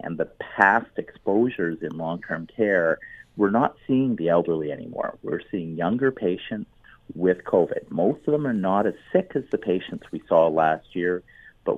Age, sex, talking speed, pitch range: 40-59, male, 175 wpm, 85-115 Hz